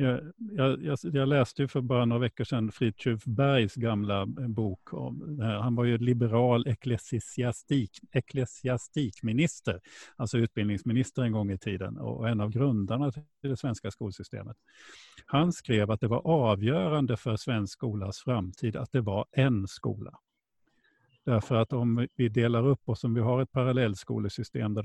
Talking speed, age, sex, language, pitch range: 155 wpm, 50-69, male, Swedish, 105-130 Hz